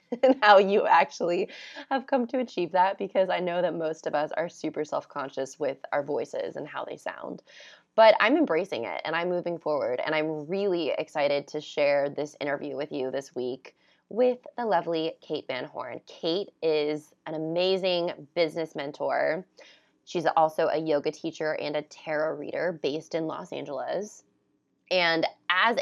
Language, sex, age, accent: English, female, 20-39, American